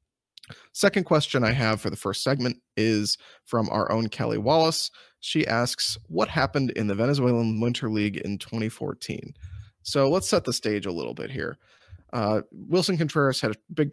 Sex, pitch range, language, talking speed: male, 110-140 Hz, English, 170 wpm